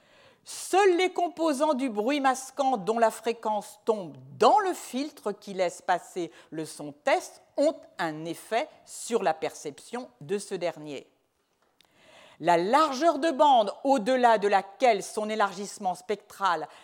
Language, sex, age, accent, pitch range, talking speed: French, female, 50-69, French, 185-300 Hz, 135 wpm